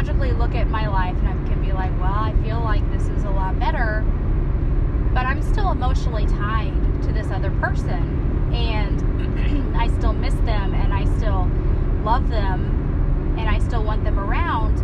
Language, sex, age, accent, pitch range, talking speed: English, female, 20-39, American, 75-95 Hz, 175 wpm